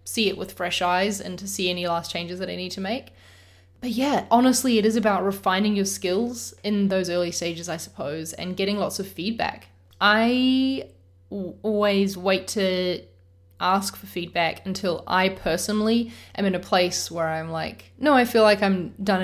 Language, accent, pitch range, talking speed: English, Australian, 165-210 Hz, 185 wpm